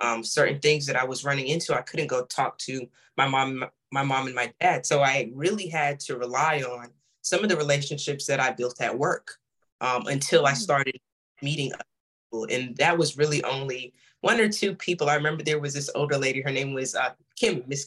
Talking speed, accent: 220 wpm, American